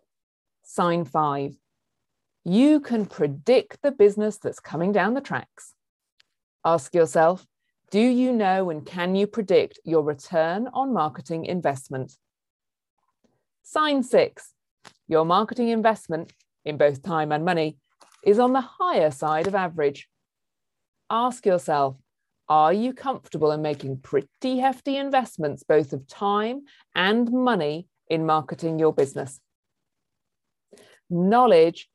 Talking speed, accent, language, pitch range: 120 wpm, British, English, 155-225 Hz